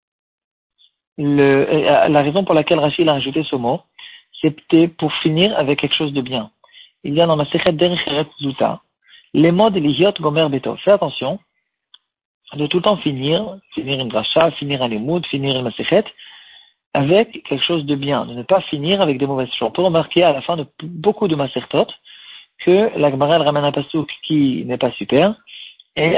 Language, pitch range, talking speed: French, 135-170 Hz, 180 wpm